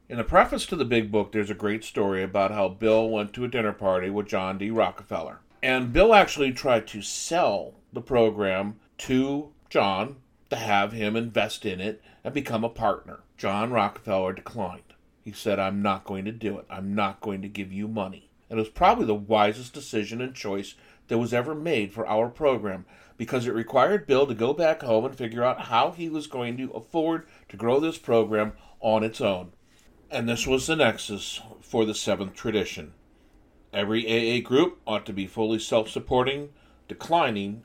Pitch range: 100-125 Hz